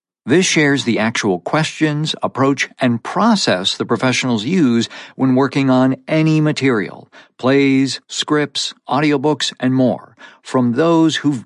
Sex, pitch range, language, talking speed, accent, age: male, 115-155 Hz, English, 115 wpm, American, 50-69